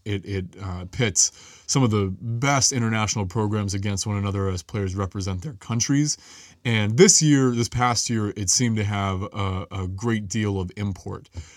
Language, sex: English, male